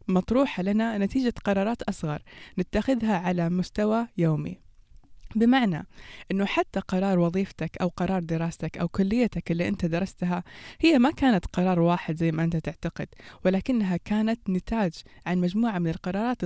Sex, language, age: female, Arabic, 20-39